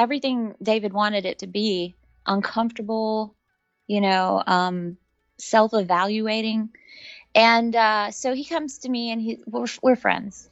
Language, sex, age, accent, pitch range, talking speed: English, female, 20-39, American, 200-245 Hz, 130 wpm